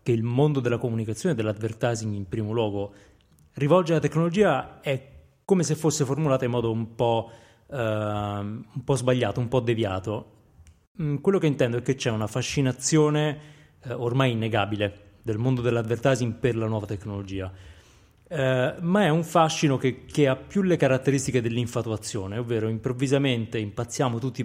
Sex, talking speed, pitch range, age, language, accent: male, 150 wpm, 115-145 Hz, 30-49, Italian, native